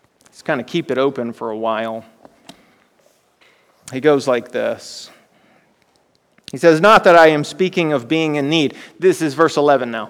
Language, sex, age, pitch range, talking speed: English, male, 30-49, 135-195 Hz, 170 wpm